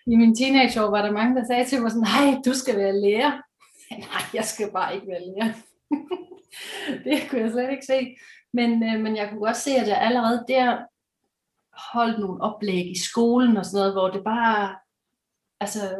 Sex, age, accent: female, 30-49, native